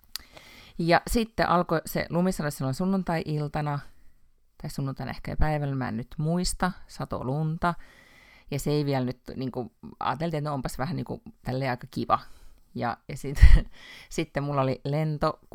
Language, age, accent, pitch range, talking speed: Finnish, 30-49, native, 125-160 Hz, 145 wpm